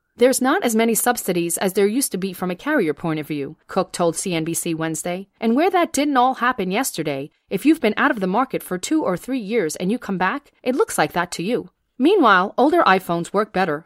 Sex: female